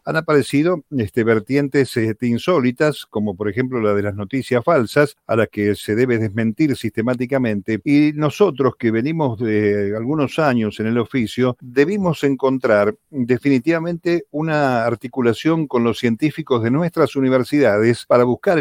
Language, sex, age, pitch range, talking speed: Spanish, male, 50-69, 110-140 Hz, 140 wpm